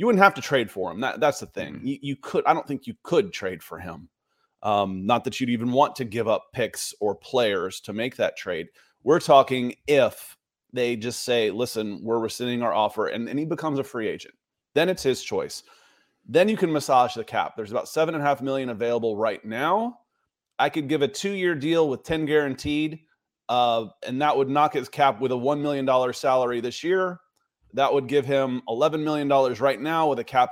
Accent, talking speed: American, 215 wpm